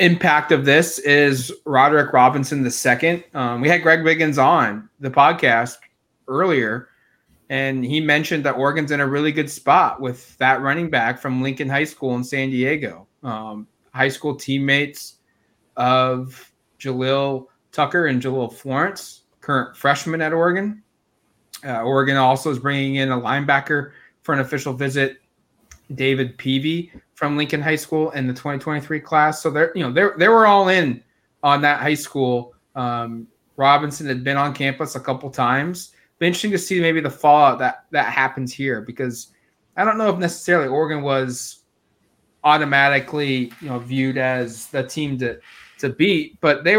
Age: 20-39